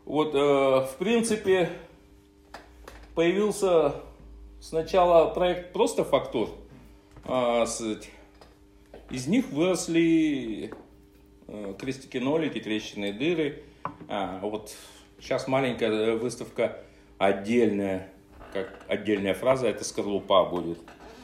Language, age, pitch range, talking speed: Russian, 40-59, 110-165 Hz, 90 wpm